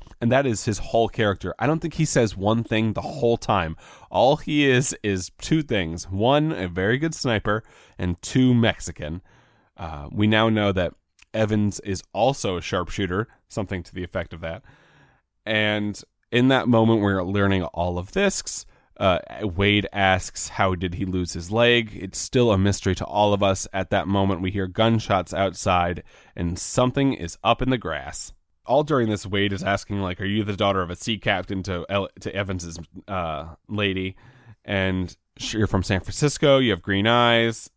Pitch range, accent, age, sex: 95-115 Hz, American, 30-49, male